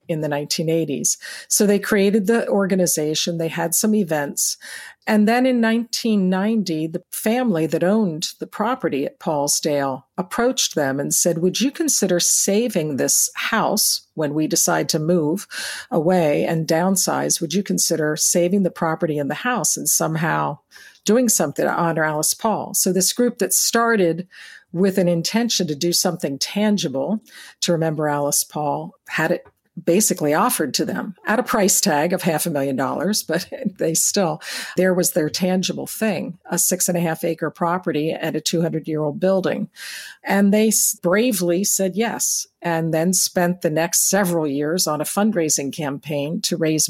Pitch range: 165-205 Hz